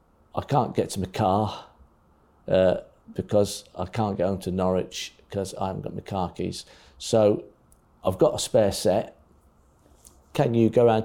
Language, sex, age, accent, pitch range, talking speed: English, male, 50-69, British, 105-135 Hz, 170 wpm